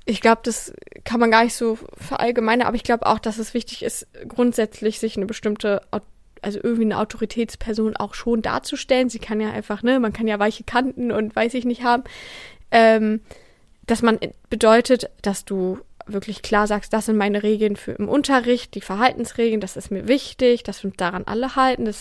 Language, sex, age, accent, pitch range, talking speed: German, female, 20-39, German, 210-235 Hz, 195 wpm